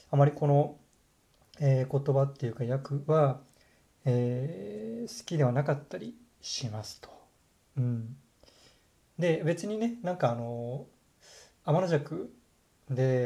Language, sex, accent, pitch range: Japanese, male, native, 125-170 Hz